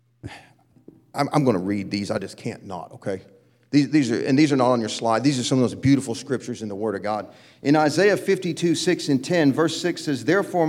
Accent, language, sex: American, English, male